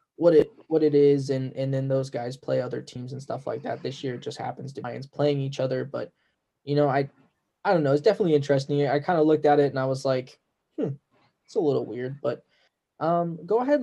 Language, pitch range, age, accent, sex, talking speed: English, 135-160 Hz, 10-29, American, male, 245 wpm